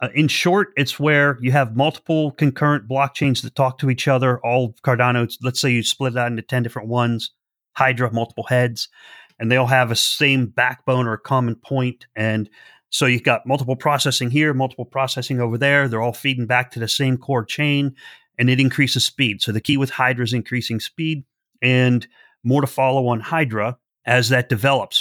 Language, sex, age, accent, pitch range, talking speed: English, male, 30-49, American, 120-140 Hz, 195 wpm